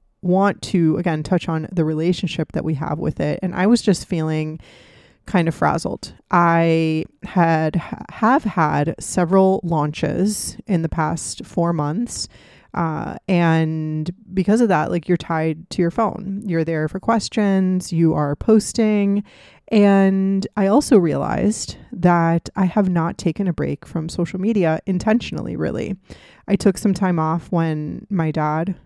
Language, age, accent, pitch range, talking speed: English, 20-39, American, 160-195 Hz, 150 wpm